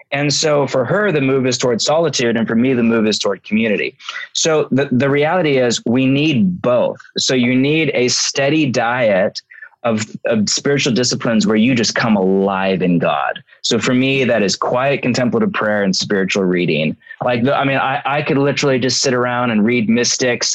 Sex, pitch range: male, 110-145 Hz